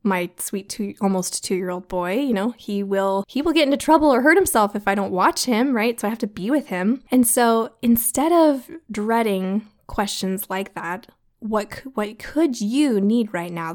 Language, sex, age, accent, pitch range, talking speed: English, female, 20-39, American, 195-255 Hz, 200 wpm